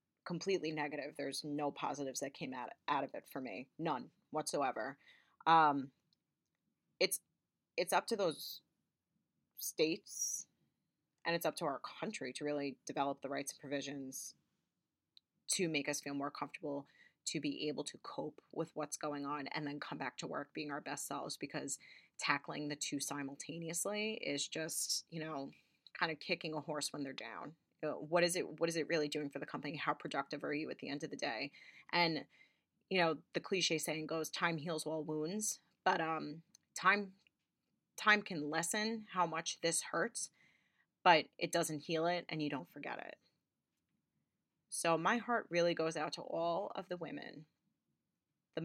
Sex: female